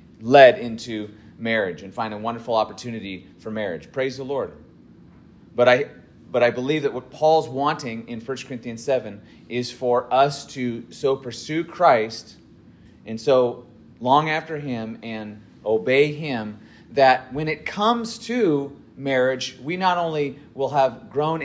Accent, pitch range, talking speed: American, 120-150 Hz, 150 wpm